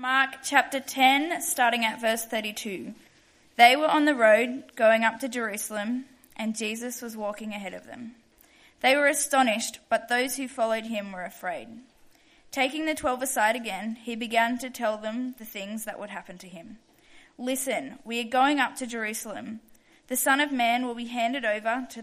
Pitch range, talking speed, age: 220-260 Hz, 180 wpm, 10-29